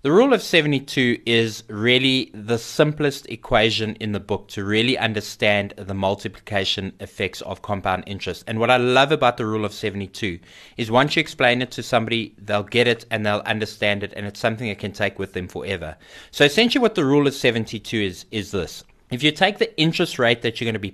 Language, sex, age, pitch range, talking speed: English, male, 20-39, 100-125 Hz, 210 wpm